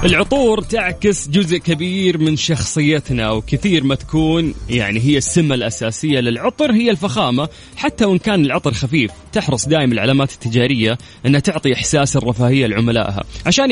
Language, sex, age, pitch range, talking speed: Arabic, male, 20-39, 125-165 Hz, 135 wpm